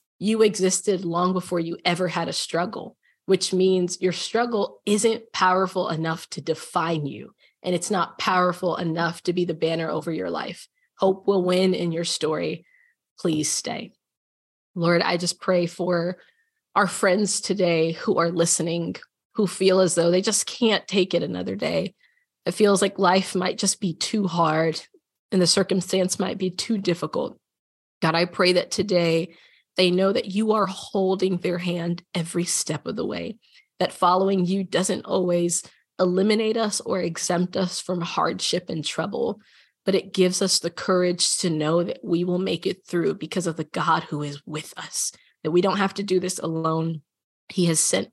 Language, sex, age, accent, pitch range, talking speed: English, female, 20-39, American, 170-190 Hz, 175 wpm